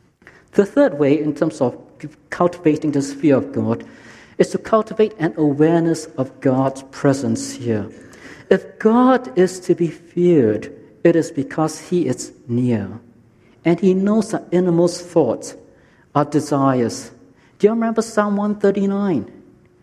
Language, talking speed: English, 135 wpm